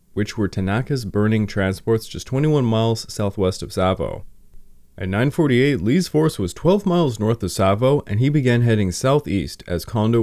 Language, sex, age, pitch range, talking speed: English, male, 20-39, 95-135 Hz, 165 wpm